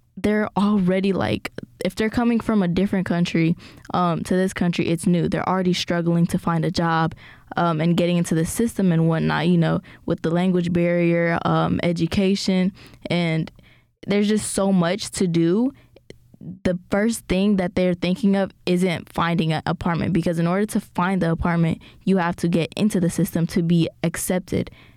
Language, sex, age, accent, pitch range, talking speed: English, female, 10-29, American, 175-210 Hz, 180 wpm